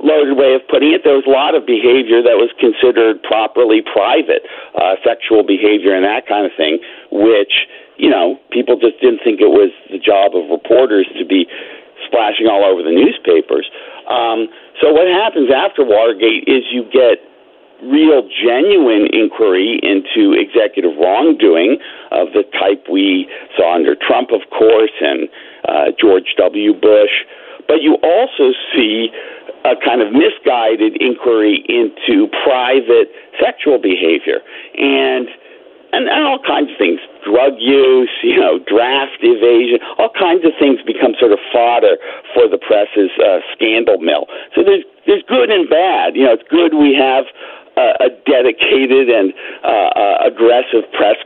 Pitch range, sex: 270-445 Hz, male